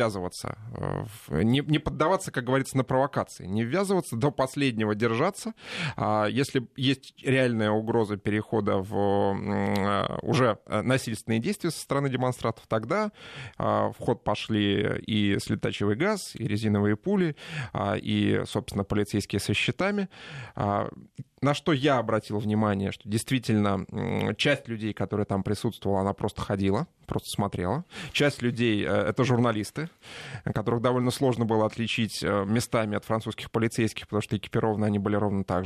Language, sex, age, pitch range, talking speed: Russian, male, 20-39, 105-130 Hz, 125 wpm